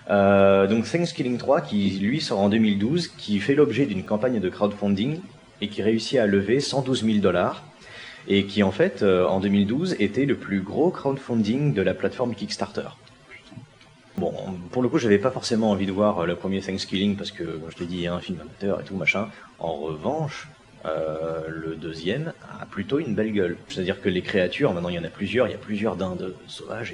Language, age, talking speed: French, 30-49, 210 wpm